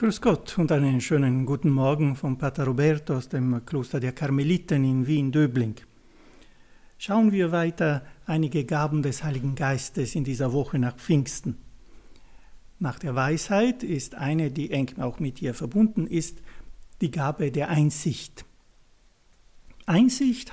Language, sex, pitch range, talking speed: German, male, 135-175 Hz, 135 wpm